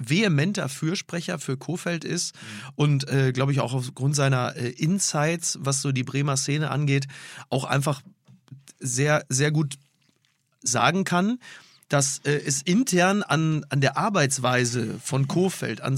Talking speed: 140 wpm